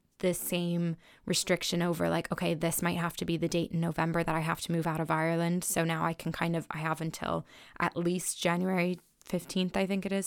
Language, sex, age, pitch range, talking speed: English, female, 10-29, 165-185 Hz, 235 wpm